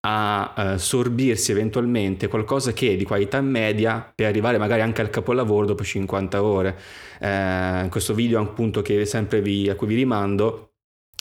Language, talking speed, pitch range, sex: Italian, 155 wpm, 100-115 Hz, male